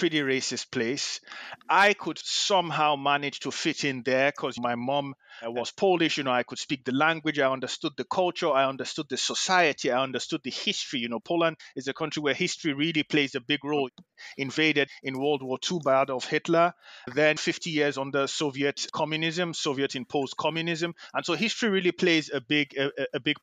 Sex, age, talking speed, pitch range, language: male, 30-49, 190 wpm, 130-165 Hz, English